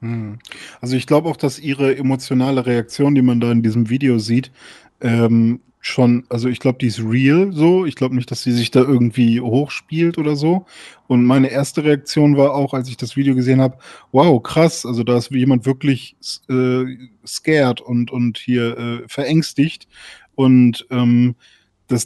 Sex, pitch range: male, 120-145 Hz